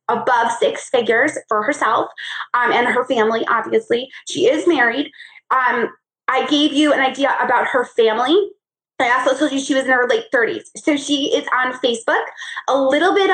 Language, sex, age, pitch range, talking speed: English, female, 20-39, 240-345 Hz, 180 wpm